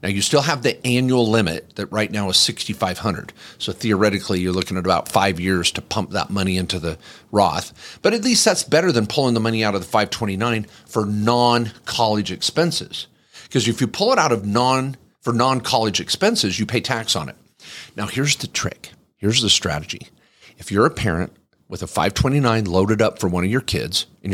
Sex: male